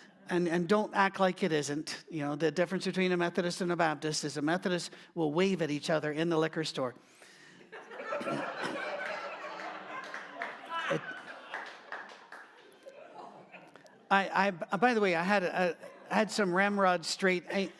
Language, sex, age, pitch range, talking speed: English, male, 50-69, 165-205 Hz, 140 wpm